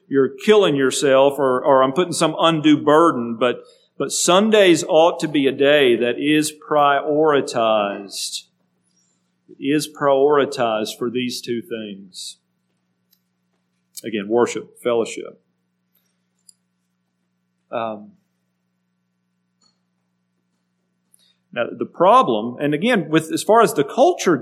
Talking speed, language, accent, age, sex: 105 wpm, English, American, 50-69, male